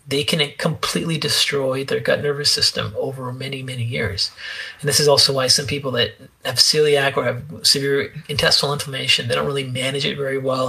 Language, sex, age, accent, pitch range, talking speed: English, male, 30-49, American, 125-145 Hz, 190 wpm